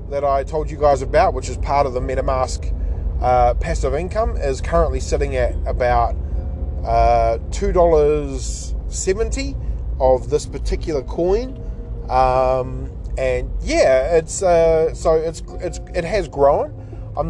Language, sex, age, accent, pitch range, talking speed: English, male, 20-39, Australian, 115-155 Hz, 140 wpm